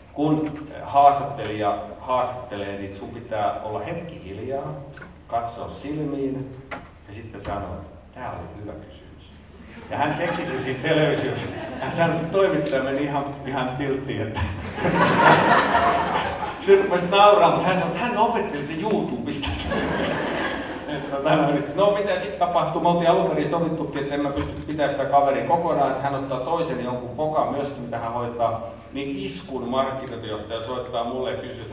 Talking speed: 150 wpm